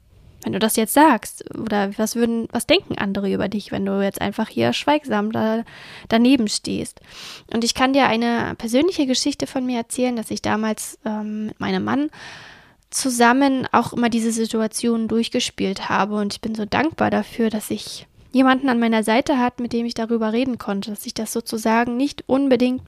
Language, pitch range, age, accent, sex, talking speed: German, 220-260 Hz, 20-39, German, female, 185 wpm